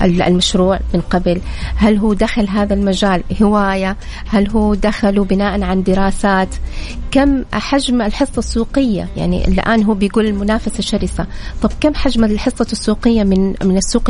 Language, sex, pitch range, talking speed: Arabic, female, 200-250 Hz, 140 wpm